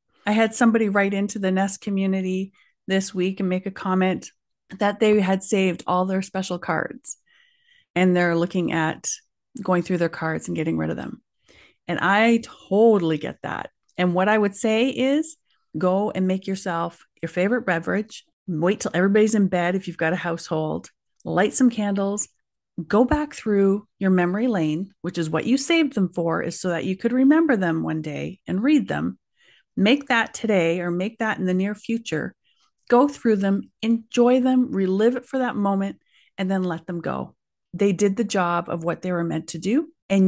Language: English